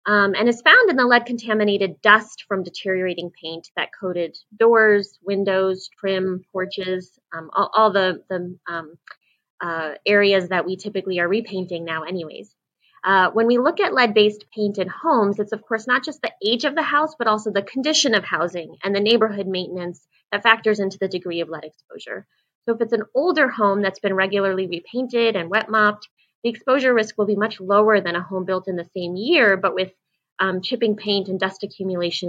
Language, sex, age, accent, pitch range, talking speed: English, female, 20-39, American, 185-230 Hz, 195 wpm